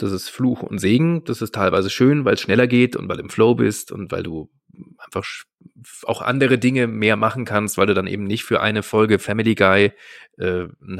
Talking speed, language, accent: 225 wpm, German, German